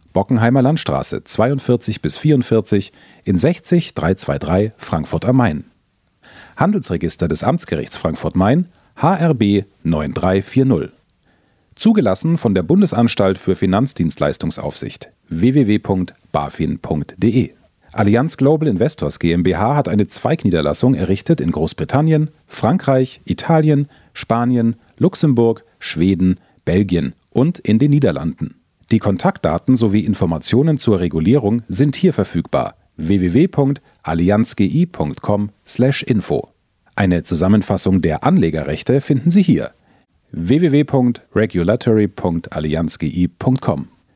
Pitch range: 95-140 Hz